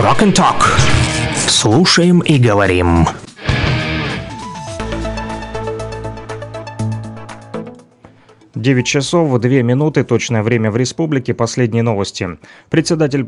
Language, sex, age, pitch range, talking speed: Russian, male, 30-49, 110-125 Hz, 70 wpm